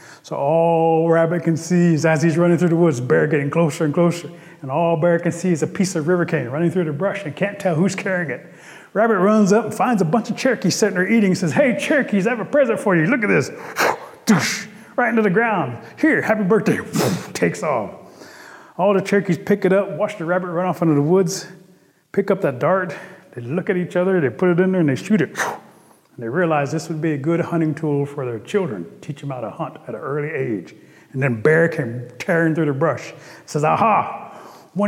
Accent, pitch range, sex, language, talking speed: American, 155-195 Hz, male, English, 235 wpm